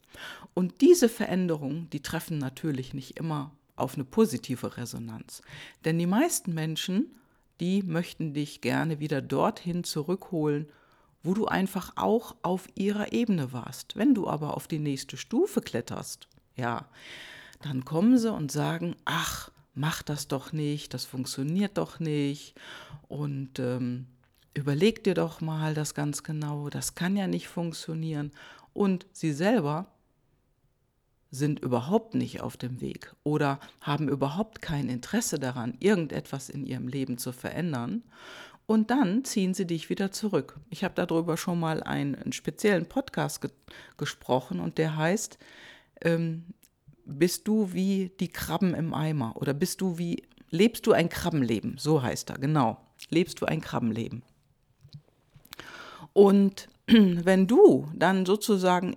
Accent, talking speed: German, 140 wpm